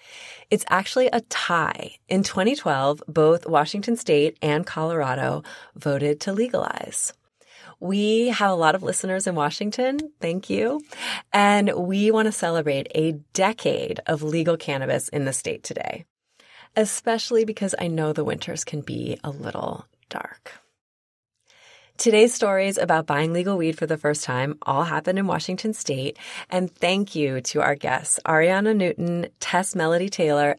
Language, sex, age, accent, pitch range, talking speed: English, female, 30-49, American, 150-205 Hz, 145 wpm